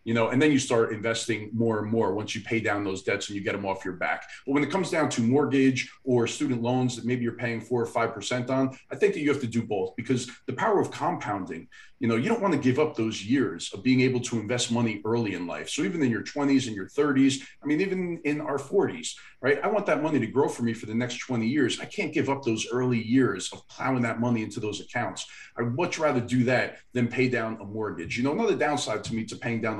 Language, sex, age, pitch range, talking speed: English, male, 40-59, 115-135 Hz, 270 wpm